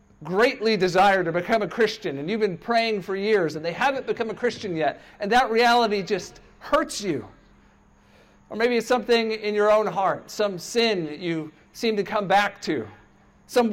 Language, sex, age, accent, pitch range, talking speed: English, male, 50-69, American, 175-230 Hz, 190 wpm